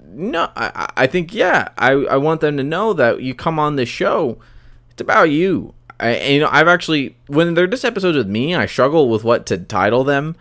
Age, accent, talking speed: 20-39, American, 225 wpm